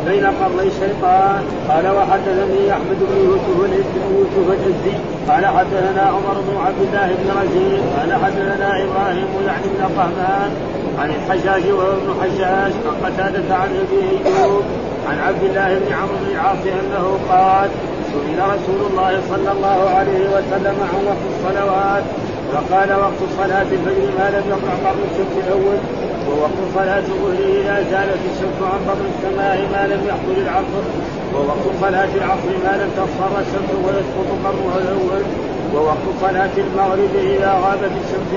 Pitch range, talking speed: 190-200 Hz, 145 wpm